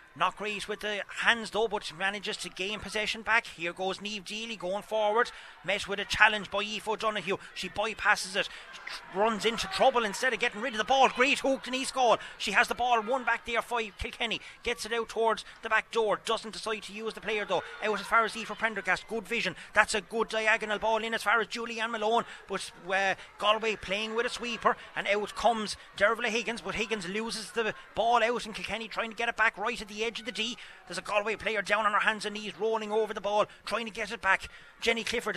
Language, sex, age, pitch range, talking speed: English, male, 30-49, 200-230 Hz, 240 wpm